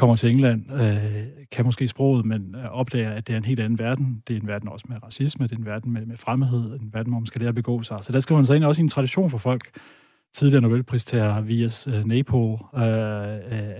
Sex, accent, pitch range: male, native, 110-130 Hz